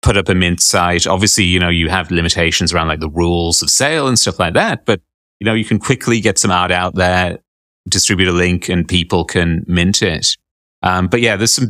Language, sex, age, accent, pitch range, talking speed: English, male, 30-49, British, 85-100 Hz, 230 wpm